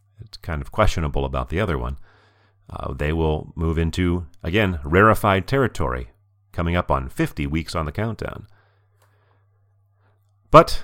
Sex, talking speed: male, 140 wpm